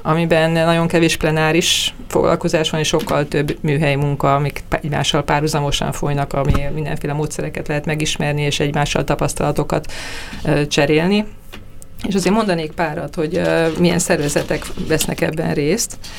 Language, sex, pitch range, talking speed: Hungarian, female, 150-170 Hz, 125 wpm